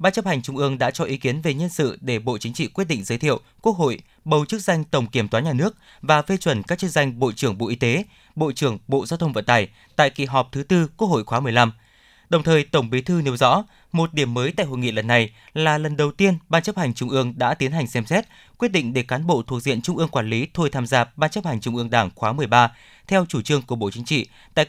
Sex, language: male, Vietnamese